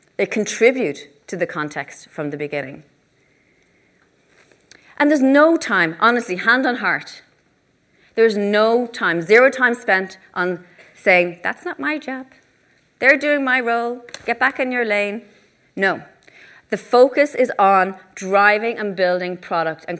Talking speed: 140 wpm